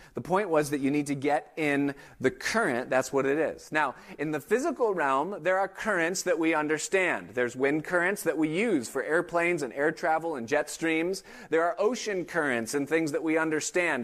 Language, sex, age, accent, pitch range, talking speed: English, male, 30-49, American, 155-200 Hz, 210 wpm